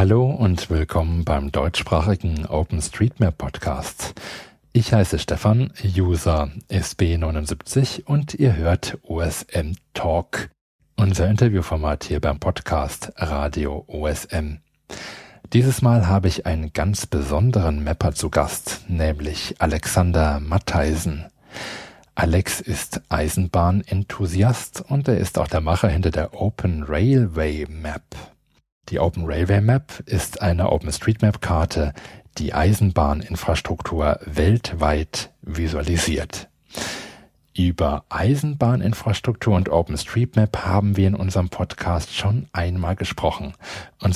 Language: German